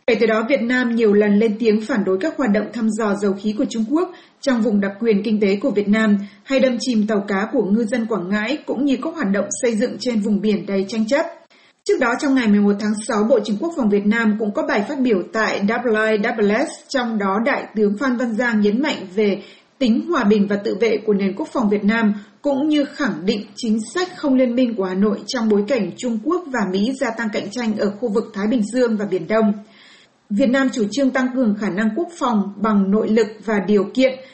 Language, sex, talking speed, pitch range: Vietnamese, female, 250 wpm, 210-260 Hz